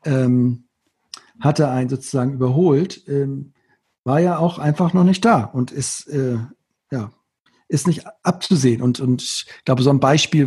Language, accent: German, German